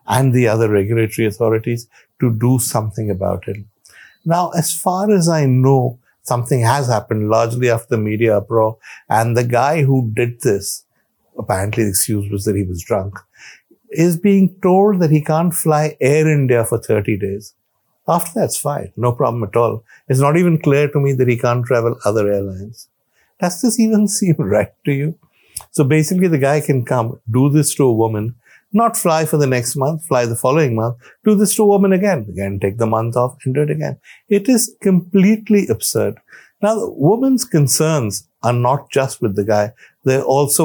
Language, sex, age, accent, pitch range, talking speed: English, male, 60-79, Indian, 110-155 Hz, 190 wpm